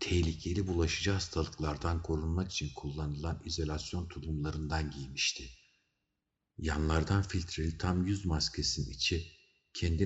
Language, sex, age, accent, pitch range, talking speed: Turkish, male, 50-69, native, 75-95 Hz, 95 wpm